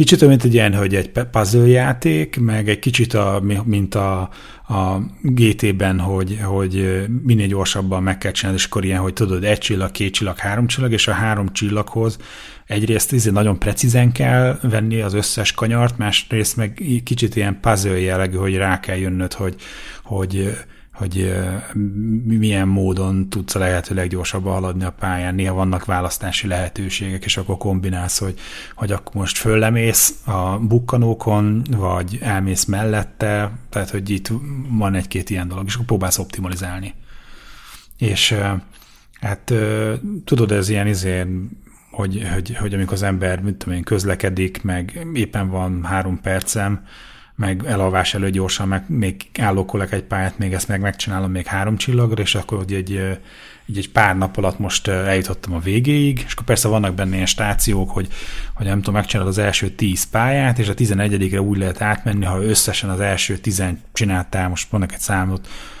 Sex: male